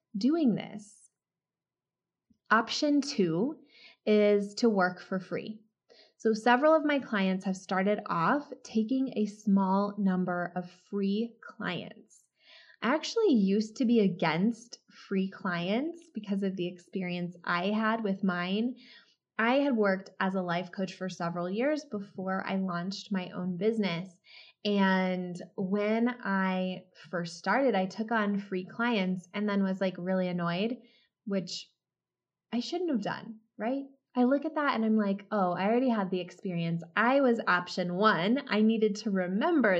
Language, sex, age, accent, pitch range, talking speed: English, female, 20-39, American, 190-235 Hz, 150 wpm